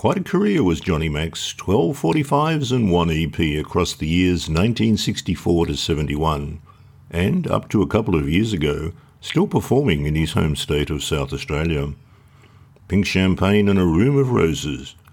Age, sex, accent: 60-79, male, Australian